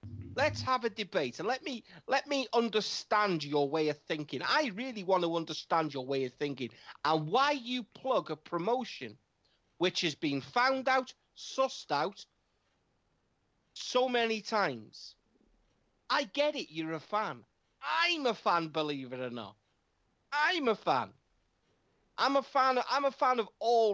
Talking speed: 160 wpm